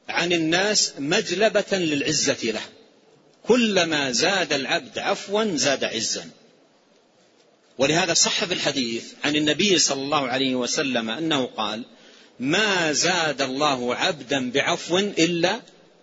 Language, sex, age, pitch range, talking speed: Arabic, male, 50-69, 145-200 Hz, 110 wpm